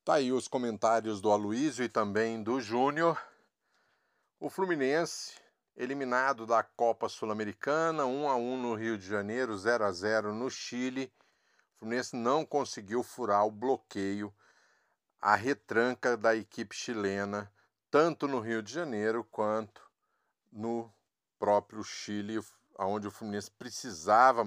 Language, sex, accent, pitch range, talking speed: Portuguese, male, Brazilian, 110-135 Hz, 125 wpm